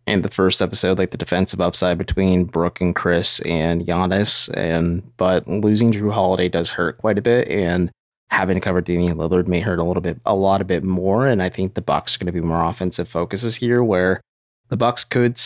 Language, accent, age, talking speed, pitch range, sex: English, American, 20-39, 220 wpm, 90-110 Hz, male